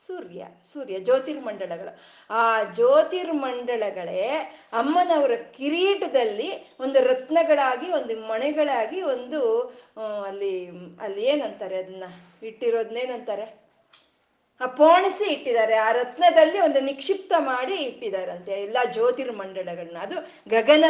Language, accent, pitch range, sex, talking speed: Kannada, native, 225-315 Hz, female, 90 wpm